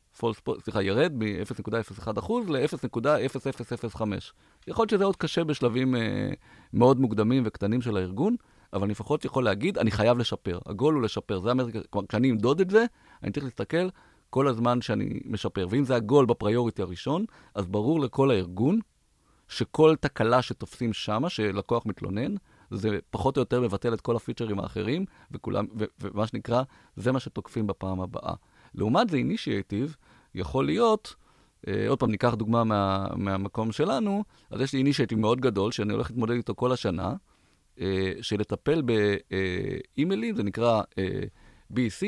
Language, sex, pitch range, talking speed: Hebrew, male, 105-135 Hz, 155 wpm